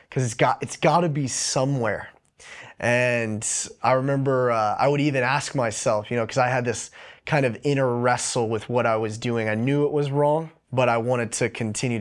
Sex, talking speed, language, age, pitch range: male, 210 wpm, English, 20-39, 115-145 Hz